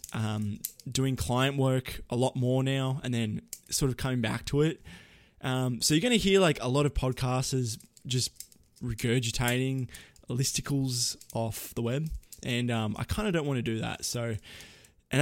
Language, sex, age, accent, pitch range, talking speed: English, male, 20-39, Australian, 115-140 Hz, 180 wpm